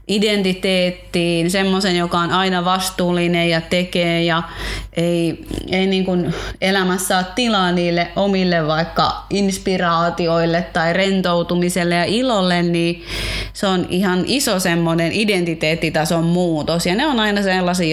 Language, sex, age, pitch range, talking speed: Finnish, female, 20-39, 170-215 Hz, 125 wpm